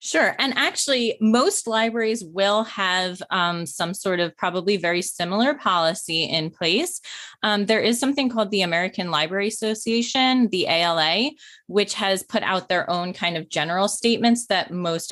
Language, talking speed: English, 160 wpm